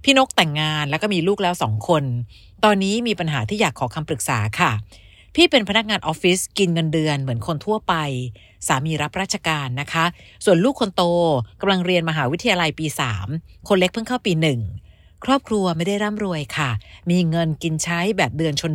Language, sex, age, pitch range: Thai, female, 60-79, 145-210 Hz